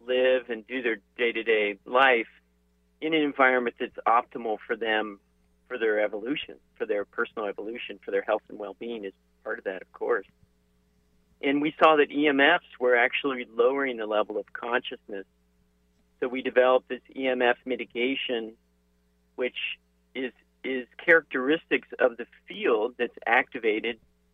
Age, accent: 40-59, American